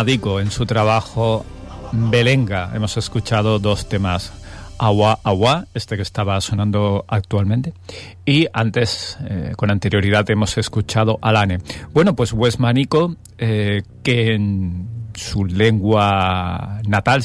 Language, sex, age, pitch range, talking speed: Spanish, male, 40-59, 95-120 Hz, 110 wpm